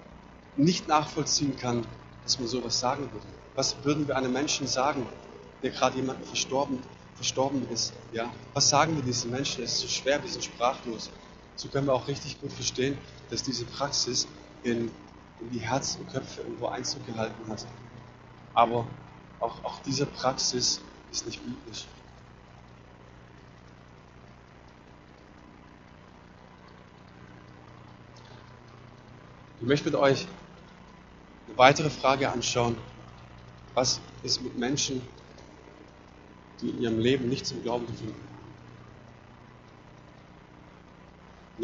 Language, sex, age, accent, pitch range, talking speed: German, male, 20-39, German, 105-135 Hz, 115 wpm